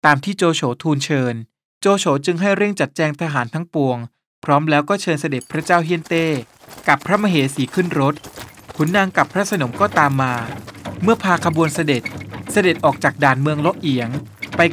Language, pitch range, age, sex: Thai, 135-175 Hz, 20-39, male